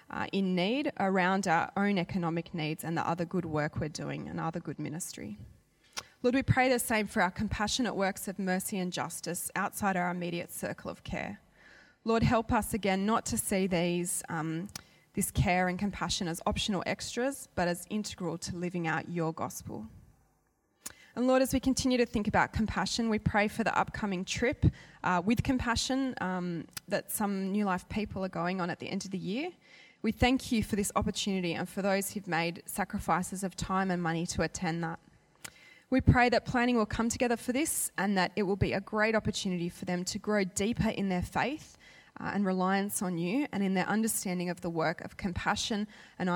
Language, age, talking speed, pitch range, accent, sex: English, 20-39, 200 wpm, 175-215 Hz, Australian, female